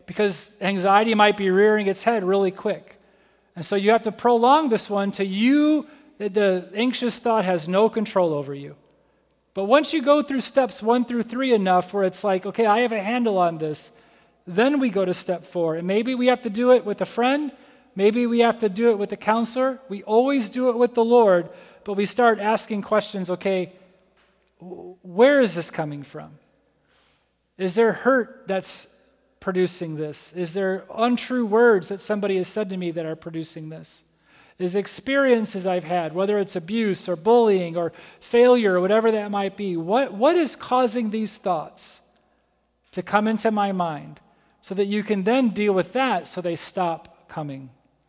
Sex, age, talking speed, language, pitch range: male, 30-49, 185 wpm, English, 185-235 Hz